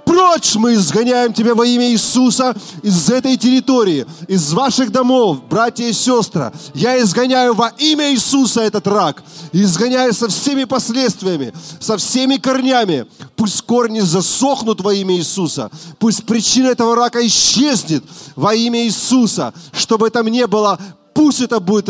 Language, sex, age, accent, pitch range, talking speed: Russian, male, 30-49, native, 190-240 Hz, 140 wpm